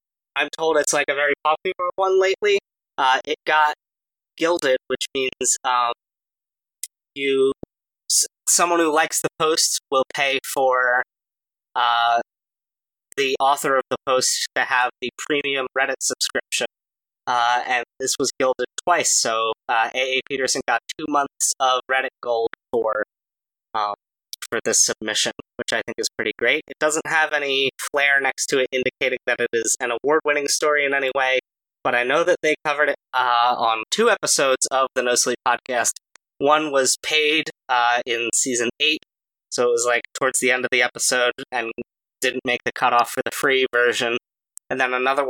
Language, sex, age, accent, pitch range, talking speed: English, male, 20-39, American, 125-145 Hz, 170 wpm